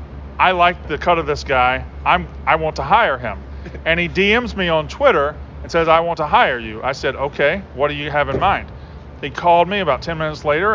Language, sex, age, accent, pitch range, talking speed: English, male, 40-59, American, 130-165 Hz, 235 wpm